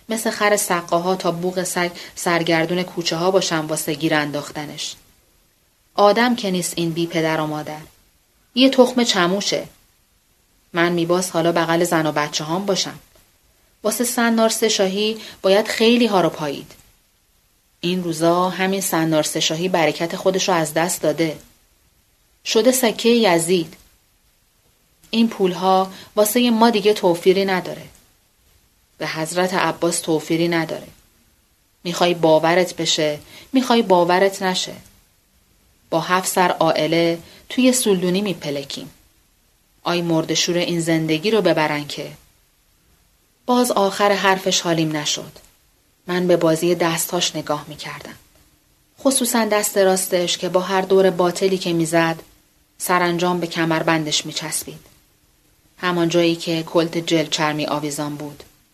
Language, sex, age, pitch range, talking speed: Persian, female, 30-49, 155-190 Hz, 125 wpm